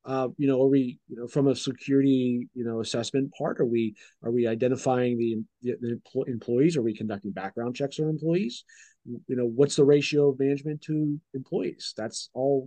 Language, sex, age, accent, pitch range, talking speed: English, male, 30-49, American, 120-150 Hz, 190 wpm